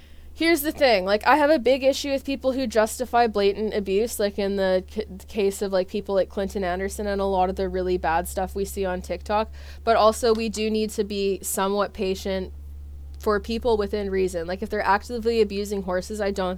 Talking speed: 210 wpm